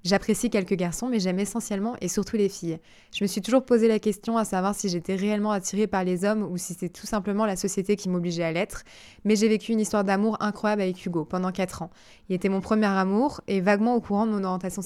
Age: 20-39